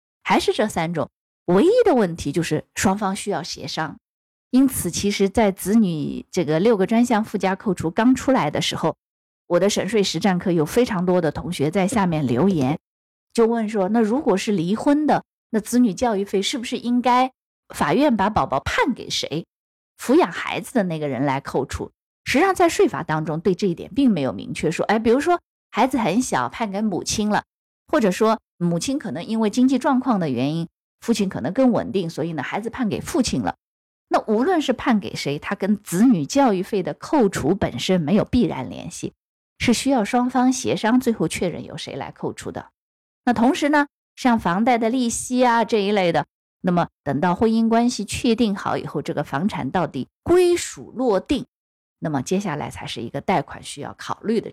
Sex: female